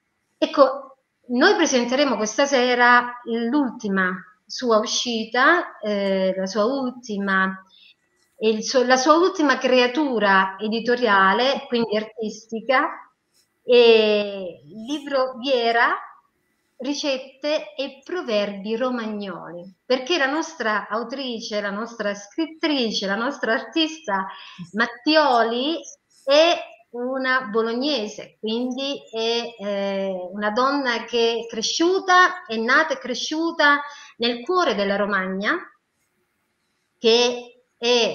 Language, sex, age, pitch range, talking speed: Italian, female, 30-49, 210-285 Hz, 95 wpm